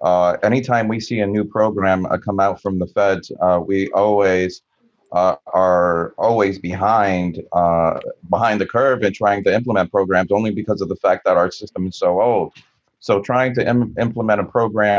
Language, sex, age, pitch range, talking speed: English, male, 40-59, 90-105 Hz, 185 wpm